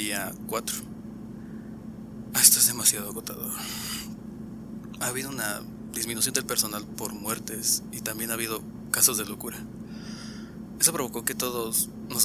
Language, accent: Spanish, Mexican